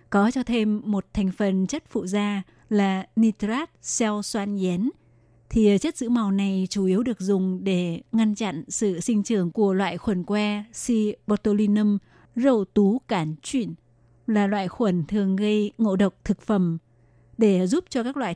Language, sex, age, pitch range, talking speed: Vietnamese, female, 20-39, 190-220 Hz, 175 wpm